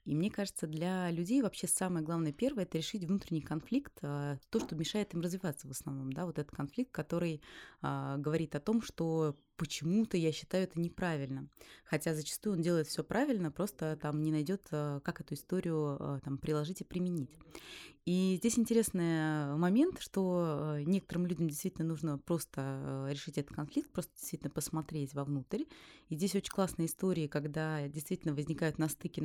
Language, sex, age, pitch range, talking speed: Russian, female, 20-39, 150-195 Hz, 155 wpm